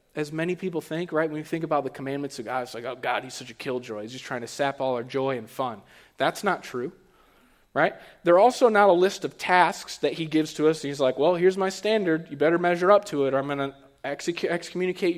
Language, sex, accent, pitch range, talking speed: English, male, American, 135-180 Hz, 250 wpm